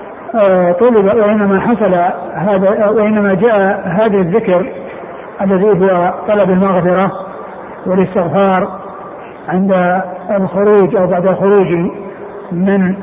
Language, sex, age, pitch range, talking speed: Arabic, male, 60-79, 190-215 Hz, 85 wpm